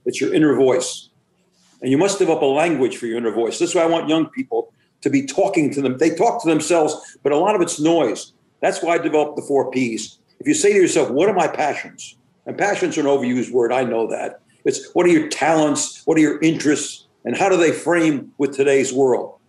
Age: 50-69